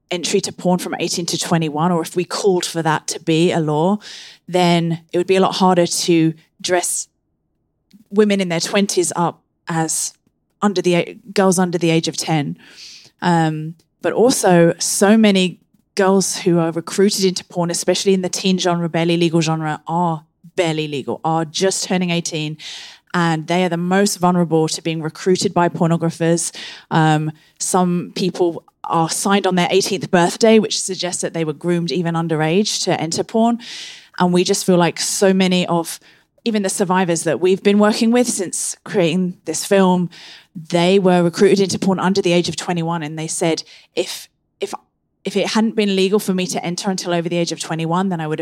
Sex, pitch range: female, 165-190 Hz